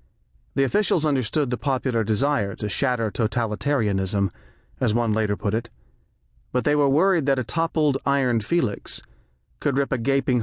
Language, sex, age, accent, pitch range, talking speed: English, male, 40-59, American, 105-135 Hz, 155 wpm